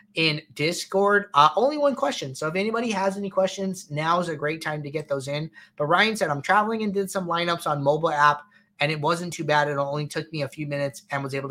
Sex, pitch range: male, 145-175 Hz